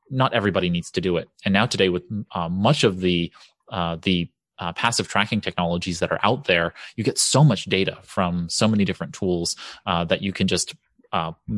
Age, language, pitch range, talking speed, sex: 30-49, English, 90-110 Hz, 205 wpm, male